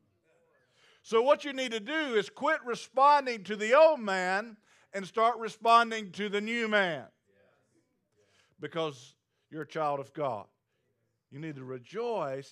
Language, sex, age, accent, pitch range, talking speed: English, male, 50-69, American, 135-220 Hz, 145 wpm